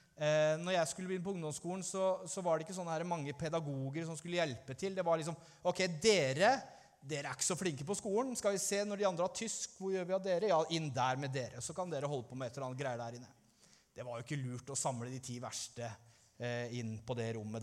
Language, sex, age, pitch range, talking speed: English, male, 30-49, 140-185 Hz, 255 wpm